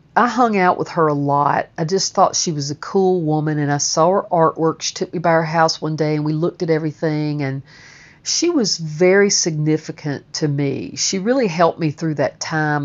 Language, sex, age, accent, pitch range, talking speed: English, female, 50-69, American, 150-190 Hz, 220 wpm